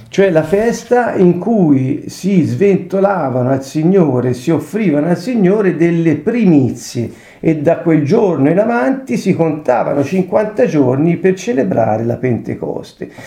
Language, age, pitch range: Italian, 50-69, 140-200 Hz